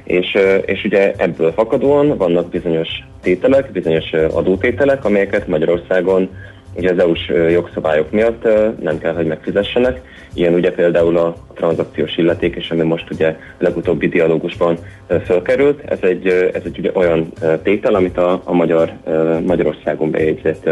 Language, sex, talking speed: Hungarian, male, 135 wpm